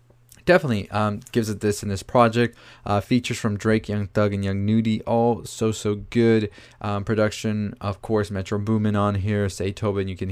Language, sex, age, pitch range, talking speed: English, male, 20-39, 105-120 Hz, 190 wpm